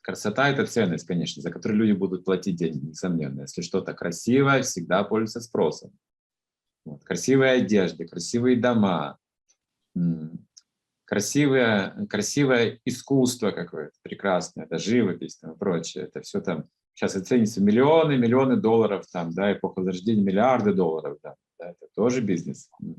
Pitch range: 95-135 Hz